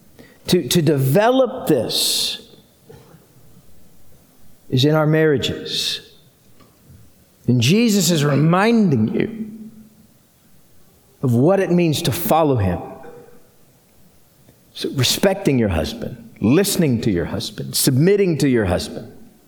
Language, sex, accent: English, male, American